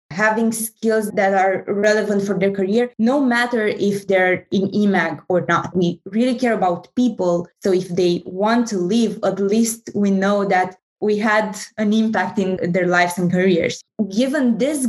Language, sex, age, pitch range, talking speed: English, female, 20-39, 185-215 Hz, 175 wpm